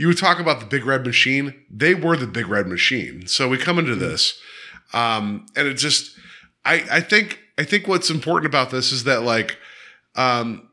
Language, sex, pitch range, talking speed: English, male, 125-170 Hz, 200 wpm